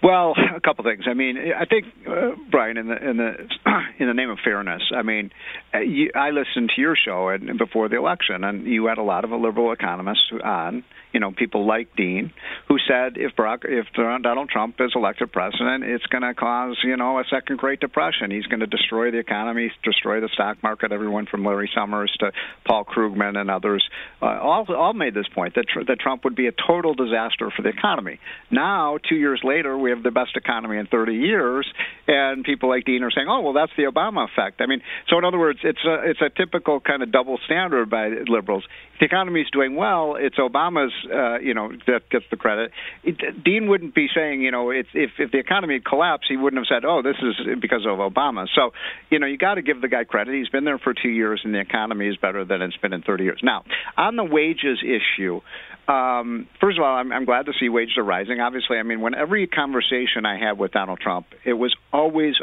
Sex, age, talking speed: male, 50-69, 230 wpm